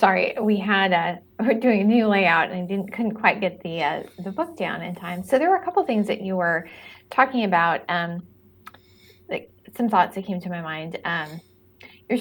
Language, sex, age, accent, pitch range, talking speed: English, female, 20-39, American, 175-210 Hz, 220 wpm